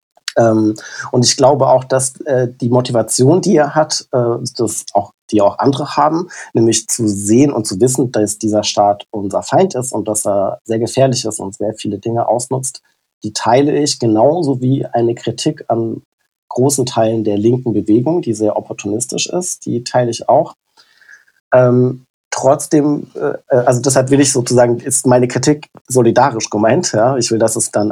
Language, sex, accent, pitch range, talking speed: German, male, German, 110-135 Hz, 175 wpm